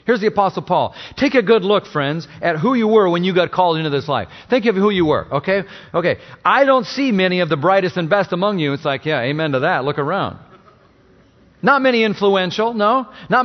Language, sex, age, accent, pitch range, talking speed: English, male, 40-59, American, 155-235 Hz, 230 wpm